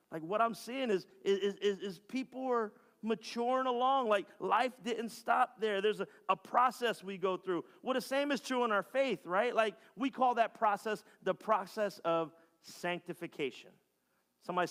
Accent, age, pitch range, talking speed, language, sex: American, 40-59, 180-230 Hz, 175 wpm, English, male